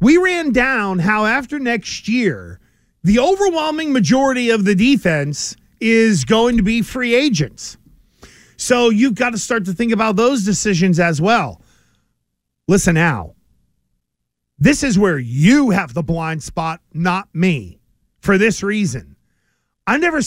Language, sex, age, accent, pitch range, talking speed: English, male, 40-59, American, 185-250 Hz, 140 wpm